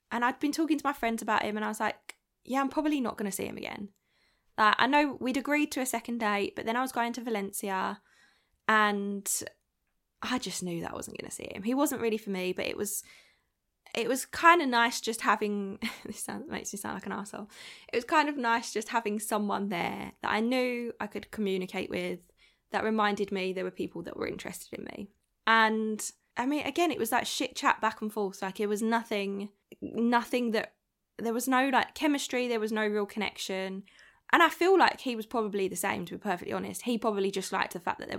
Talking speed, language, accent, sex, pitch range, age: 235 wpm, English, British, female, 205-250 Hz, 10-29